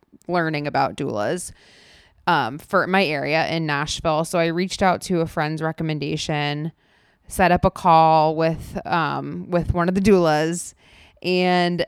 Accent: American